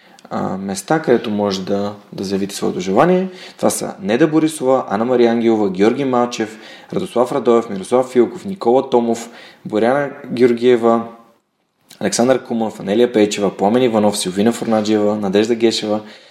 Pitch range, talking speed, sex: 105-125 Hz, 130 wpm, male